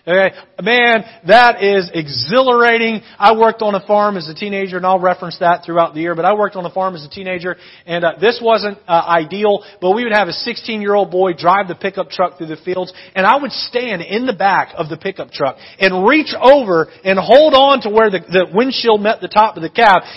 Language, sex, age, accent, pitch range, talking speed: English, male, 30-49, American, 175-215 Hz, 225 wpm